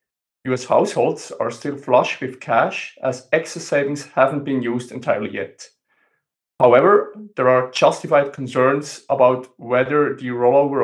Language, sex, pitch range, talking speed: English, male, 125-145 Hz, 135 wpm